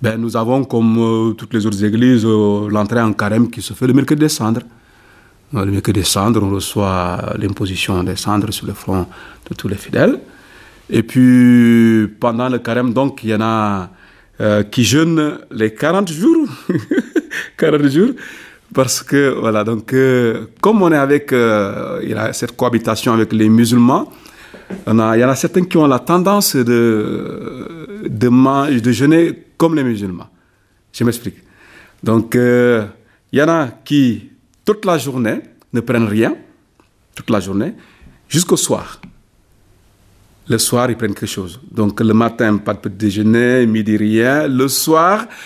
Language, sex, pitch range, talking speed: French, male, 105-130 Hz, 170 wpm